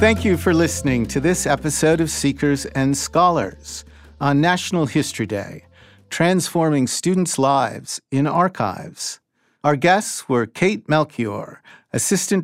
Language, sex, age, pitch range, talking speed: English, male, 50-69, 120-165 Hz, 125 wpm